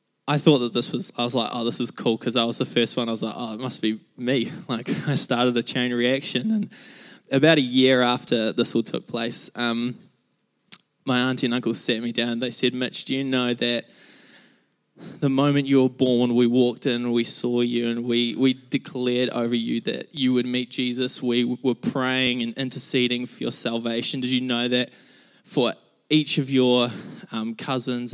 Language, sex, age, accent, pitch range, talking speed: English, male, 10-29, Australian, 115-130 Hz, 205 wpm